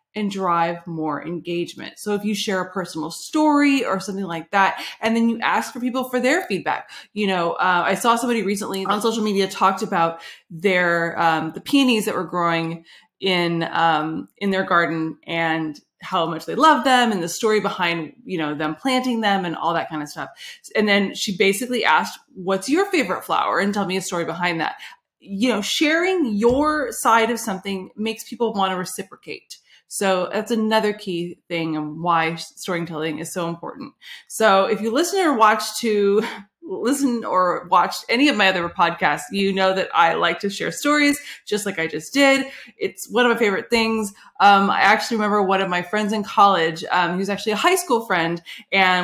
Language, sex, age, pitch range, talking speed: English, female, 20-39, 175-230 Hz, 195 wpm